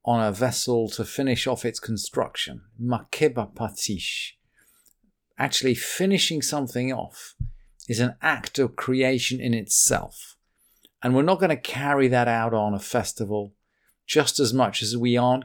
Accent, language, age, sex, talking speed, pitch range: British, English, 50-69, male, 145 wpm, 115-155 Hz